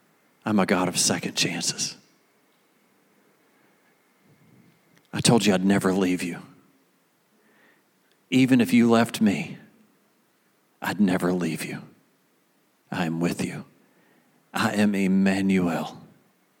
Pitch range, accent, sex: 95-125 Hz, American, male